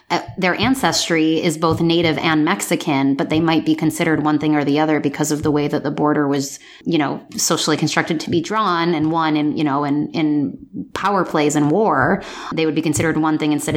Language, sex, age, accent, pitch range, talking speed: English, female, 20-39, American, 155-180 Hz, 220 wpm